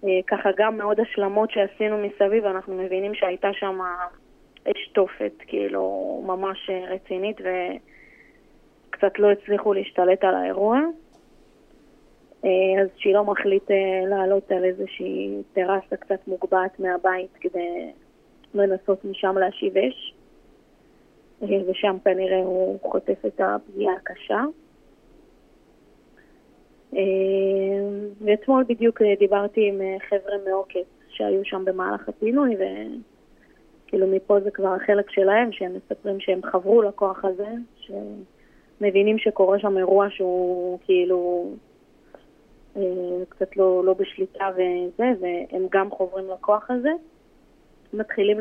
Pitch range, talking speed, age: 185-210 Hz, 105 wpm, 20-39